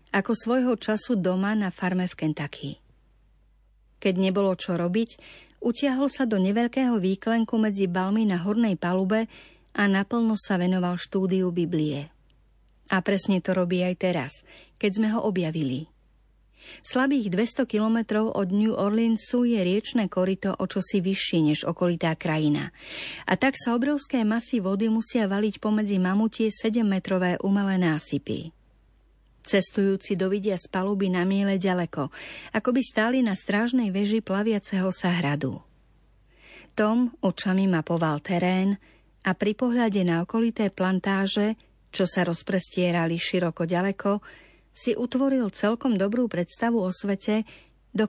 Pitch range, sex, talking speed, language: 180-220 Hz, female, 130 wpm, Slovak